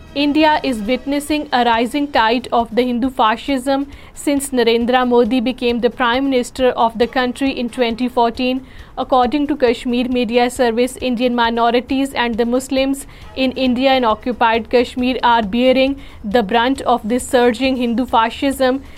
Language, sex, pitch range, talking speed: Urdu, female, 240-265 Hz, 145 wpm